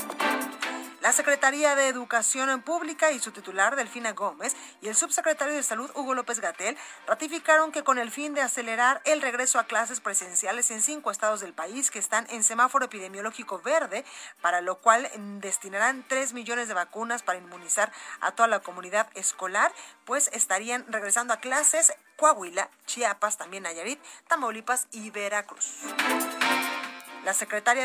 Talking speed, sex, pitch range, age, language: 155 wpm, female, 220-280 Hz, 30-49, Spanish